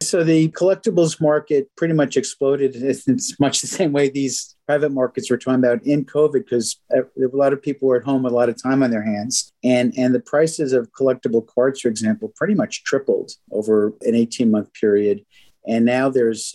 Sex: male